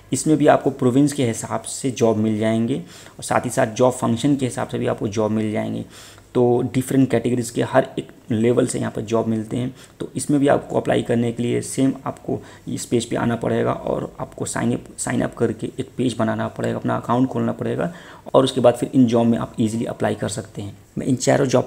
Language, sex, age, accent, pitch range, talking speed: Hindi, male, 30-49, native, 115-130 Hz, 235 wpm